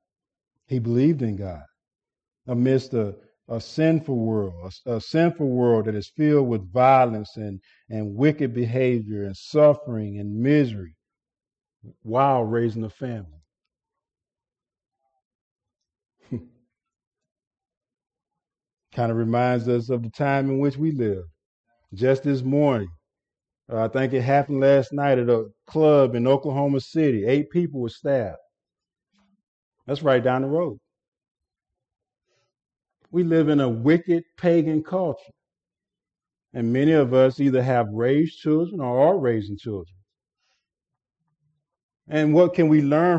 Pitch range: 120-170 Hz